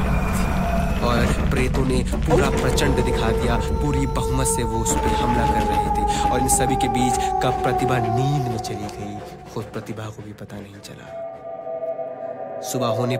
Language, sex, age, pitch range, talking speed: Hindi, male, 20-39, 110-130 Hz, 155 wpm